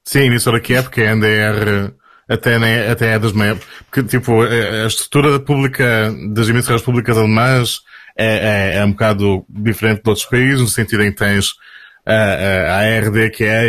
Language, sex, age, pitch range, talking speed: Portuguese, male, 20-39, 100-115 Hz, 185 wpm